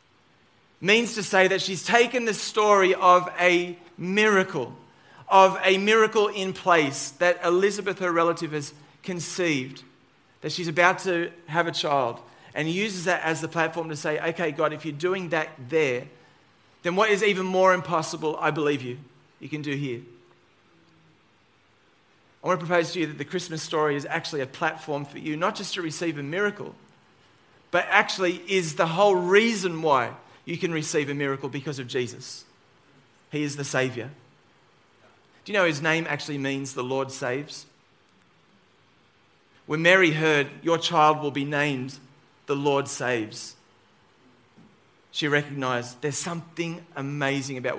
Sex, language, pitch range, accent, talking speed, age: male, English, 140-180 Hz, Australian, 155 wpm, 30-49